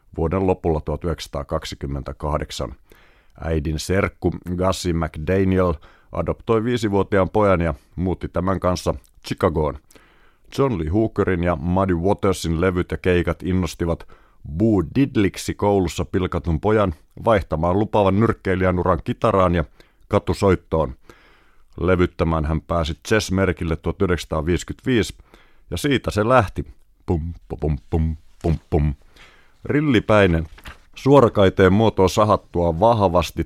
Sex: male